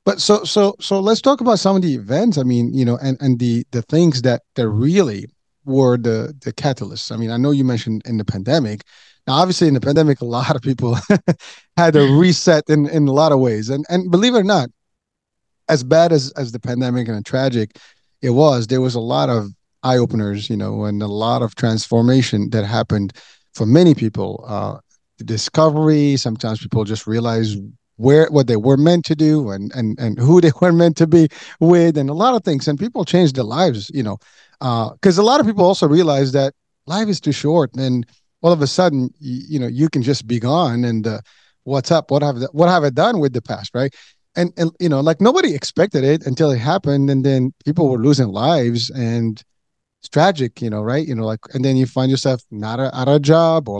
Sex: male